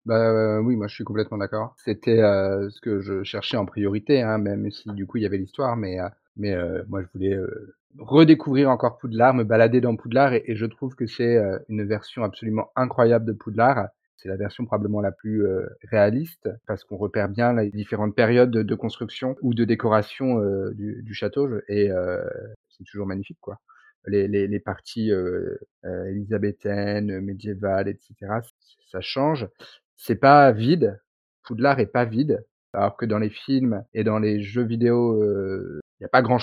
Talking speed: 195 wpm